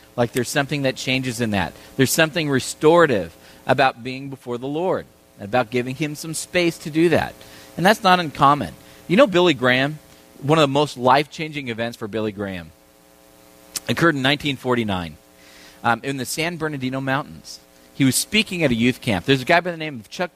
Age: 40-59